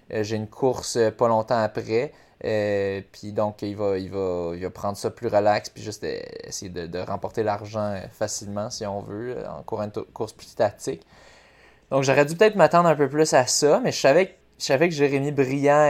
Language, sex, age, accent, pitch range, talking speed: French, male, 20-39, Canadian, 110-145 Hz, 200 wpm